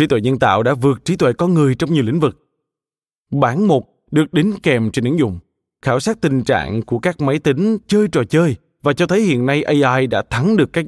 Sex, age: male, 20-39